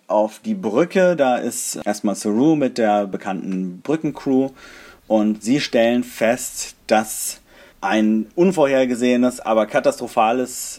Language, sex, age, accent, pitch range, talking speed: German, male, 30-49, German, 105-125 Hz, 110 wpm